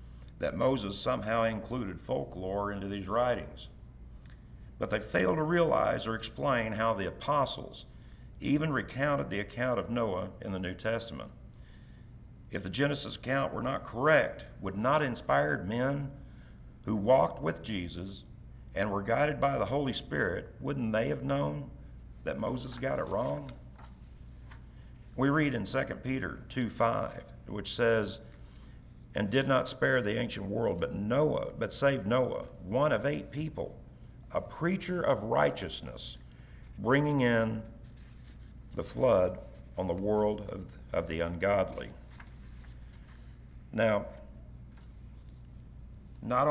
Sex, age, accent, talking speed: male, 50-69, American, 130 wpm